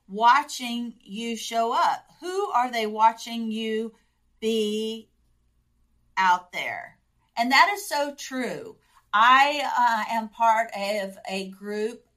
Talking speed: 120 wpm